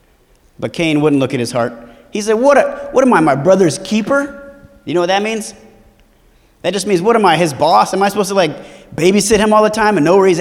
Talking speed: 250 wpm